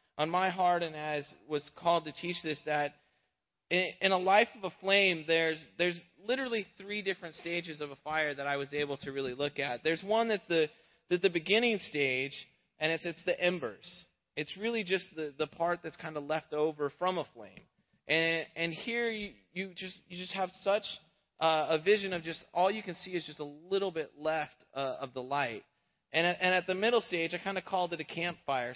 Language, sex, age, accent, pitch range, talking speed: English, male, 30-49, American, 155-195 Hz, 215 wpm